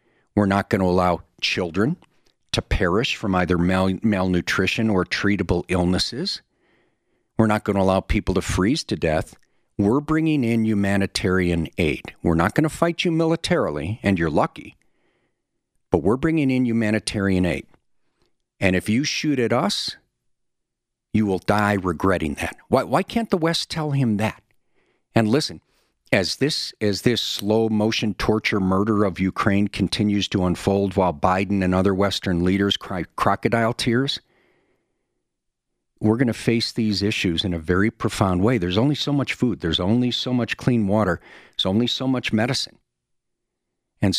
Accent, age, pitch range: American, 50-69, 95-115 Hz